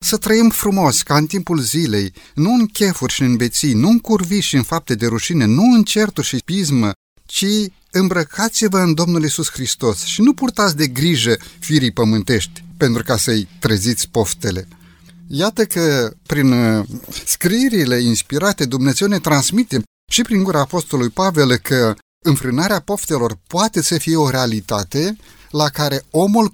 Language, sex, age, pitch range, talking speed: Romanian, male, 30-49, 120-175 Hz, 150 wpm